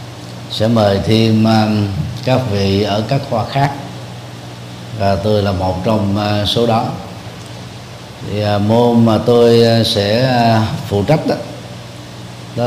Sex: male